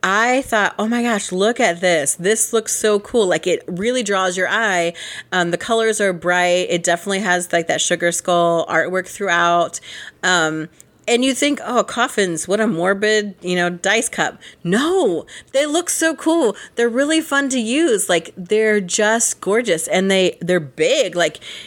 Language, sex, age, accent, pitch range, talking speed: English, female, 30-49, American, 165-225 Hz, 175 wpm